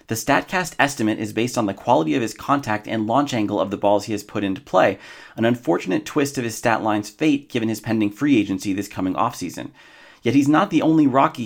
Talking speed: 230 wpm